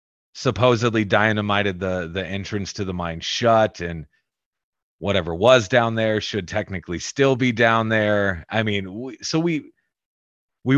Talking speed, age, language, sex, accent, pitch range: 145 wpm, 30-49, English, male, American, 90-115 Hz